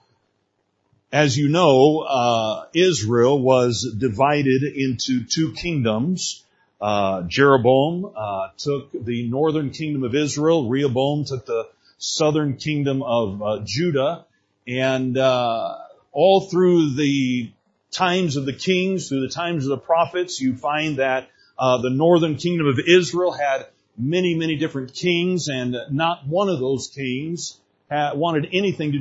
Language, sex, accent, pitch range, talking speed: English, male, American, 135-175 Hz, 135 wpm